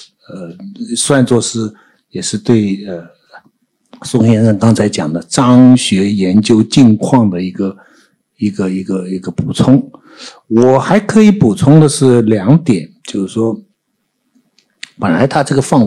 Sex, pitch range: male, 110-160 Hz